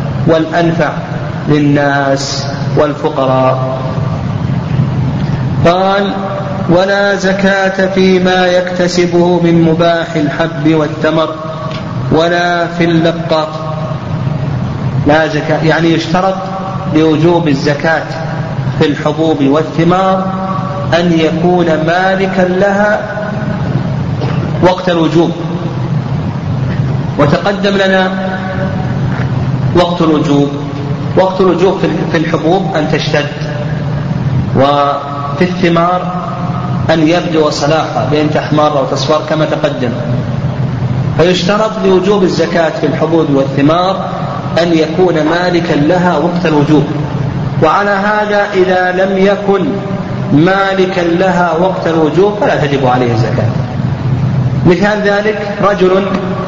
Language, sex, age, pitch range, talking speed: Arabic, male, 40-59, 145-180 Hz, 85 wpm